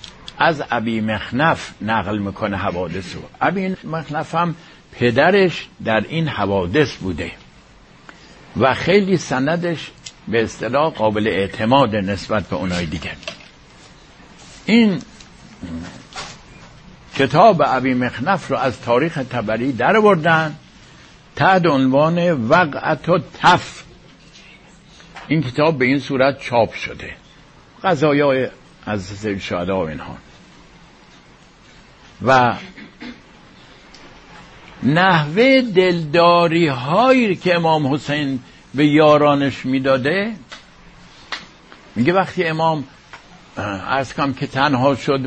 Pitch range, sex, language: 125-170 Hz, male, English